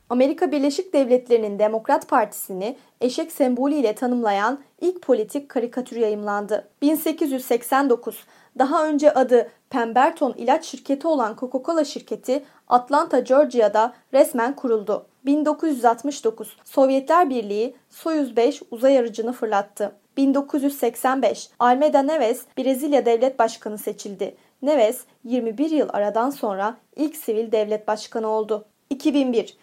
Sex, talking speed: female, 105 wpm